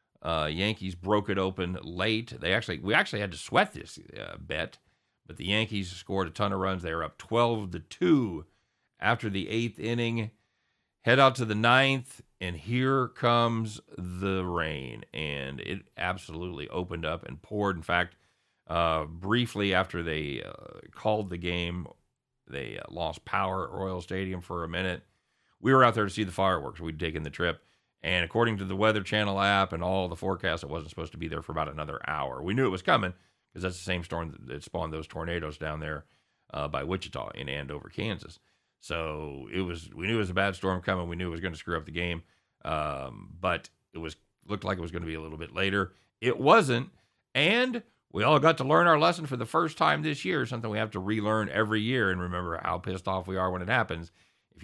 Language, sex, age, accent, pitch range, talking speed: English, male, 40-59, American, 85-110 Hz, 215 wpm